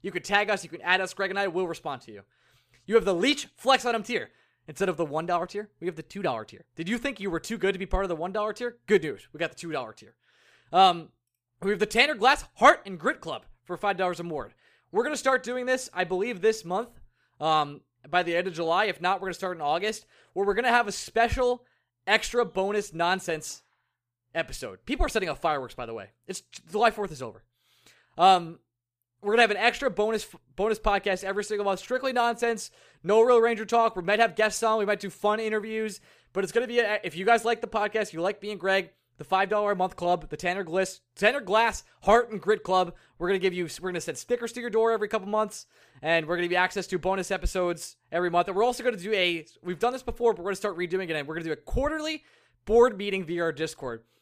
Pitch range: 170-220 Hz